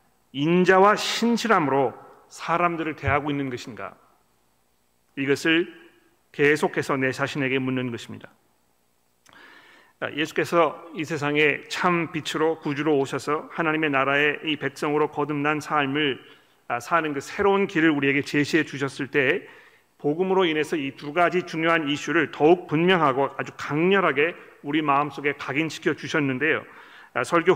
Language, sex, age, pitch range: Korean, male, 40-59, 140-170 Hz